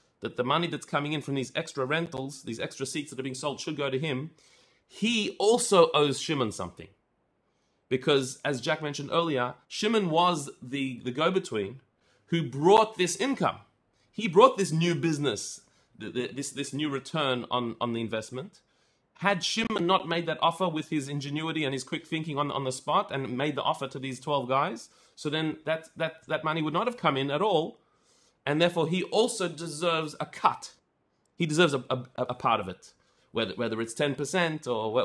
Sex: male